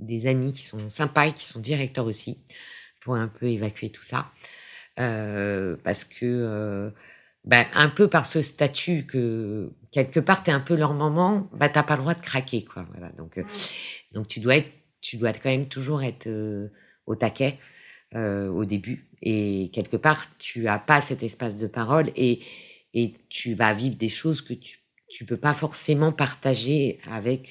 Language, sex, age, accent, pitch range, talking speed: French, female, 50-69, French, 110-150 Hz, 190 wpm